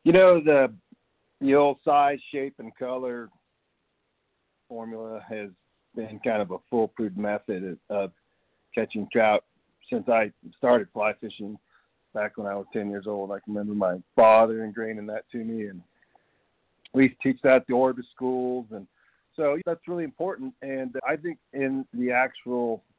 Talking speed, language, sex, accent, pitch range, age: 160 wpm, English, male, American, 110-130 Hz, 50-69